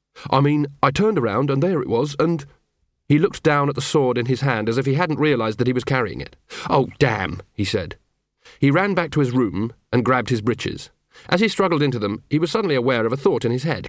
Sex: male